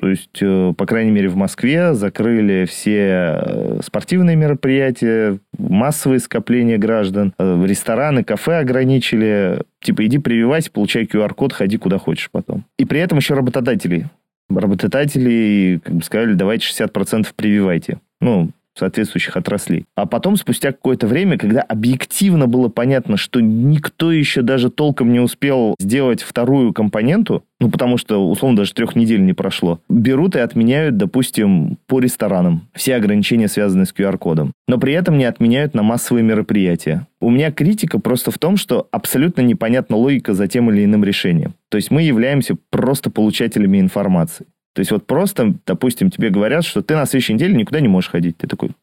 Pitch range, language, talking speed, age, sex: 105-155 Hz, Russian, 155 wpm, 30-49, male